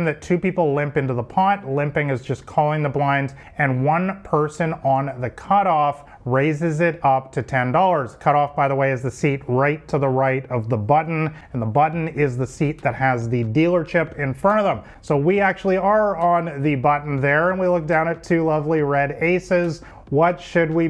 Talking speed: 210 wpm